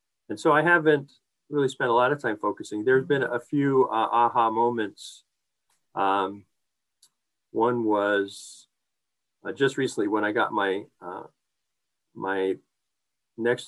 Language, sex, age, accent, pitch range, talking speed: English, male, 50-69, American, 105-170 Hz, 135 wpm